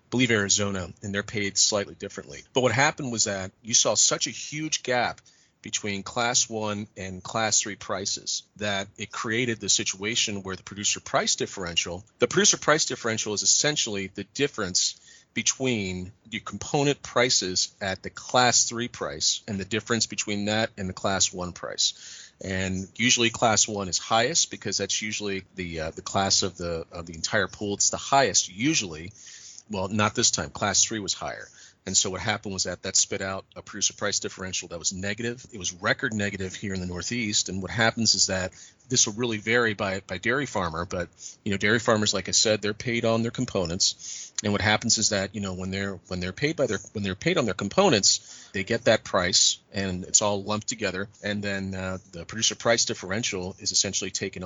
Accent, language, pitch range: American, English, 95-115 Hz